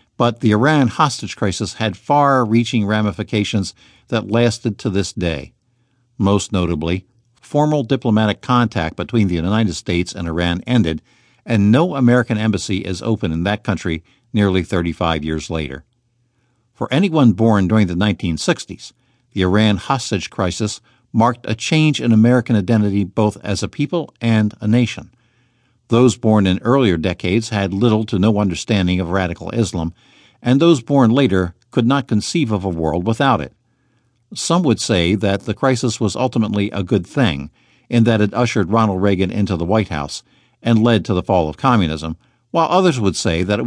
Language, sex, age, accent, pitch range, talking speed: English, male, 50-69, American, 95-120 Hz, 165 wpm